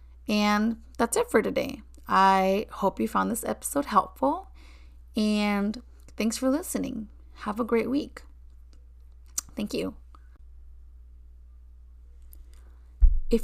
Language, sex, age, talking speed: English, female, 30-49, 105 wpm